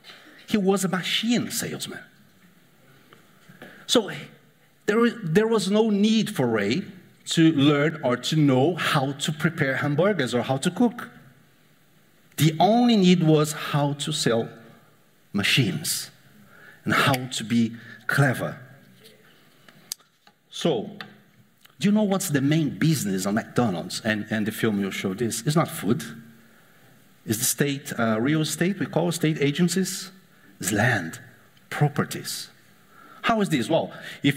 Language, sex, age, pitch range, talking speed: English, male, 50-69, 135-180 Hz, 135 wpm